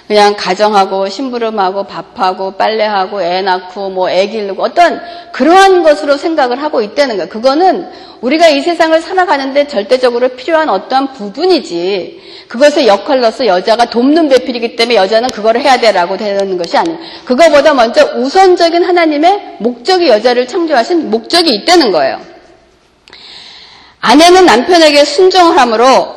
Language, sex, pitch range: Korean, female, 230-345 Hz